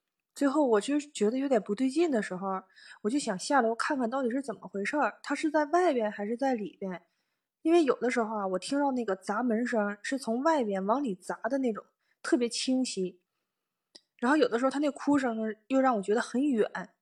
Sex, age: female, 20-39